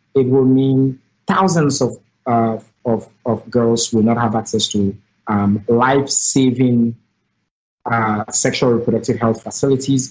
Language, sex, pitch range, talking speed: English, male, 115-135 Hz, 130 wpm